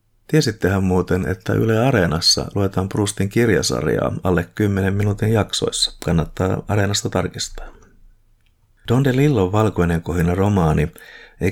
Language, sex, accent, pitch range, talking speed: Finnish, male, native, 85-105 Hz, 110 wpm